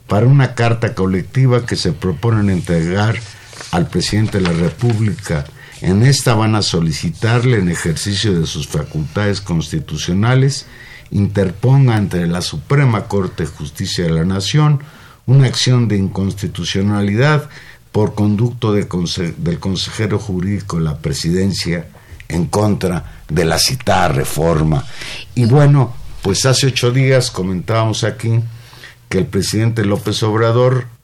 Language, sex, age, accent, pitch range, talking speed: Spanish, male, 50-69, Mexican, 95-125 Hz, 125 wpm